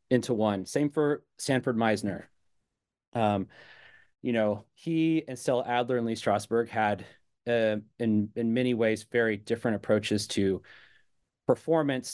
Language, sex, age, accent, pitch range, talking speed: English, male, 30-49, American, 105-125 Hz, 135 wpm